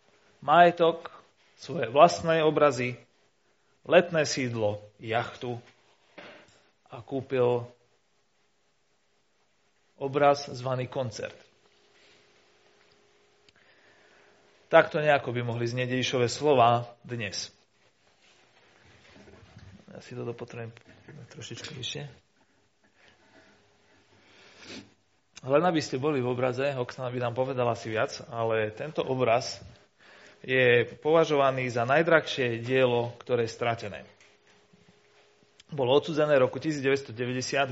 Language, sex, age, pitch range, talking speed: Slovak, male, 30-49, 120-145 Hz, 85 wpm